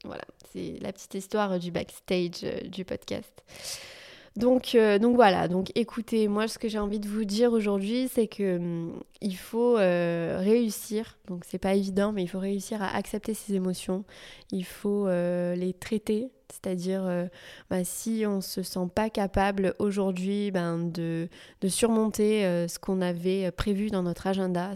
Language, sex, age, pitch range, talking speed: French, female, 20-39, 180-210 Hz, 170 wpm